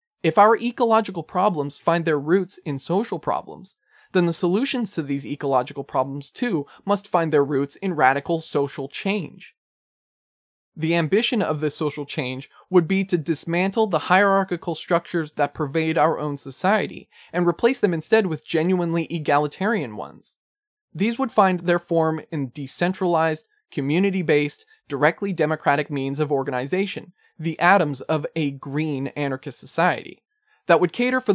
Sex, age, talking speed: male, 20-39, 145 wpm